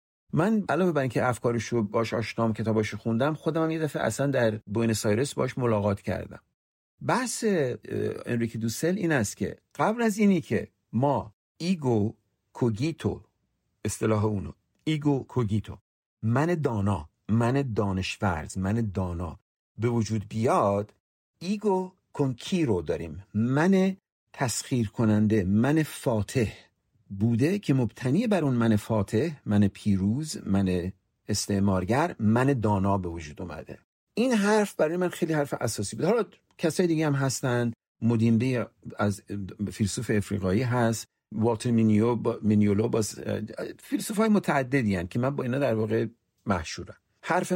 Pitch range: 105-150 Hz